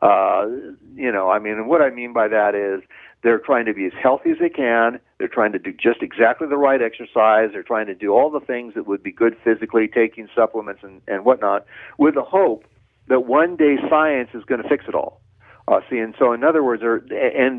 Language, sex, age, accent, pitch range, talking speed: English, male, 60-79, American, 110-140 Hz, 235 wpm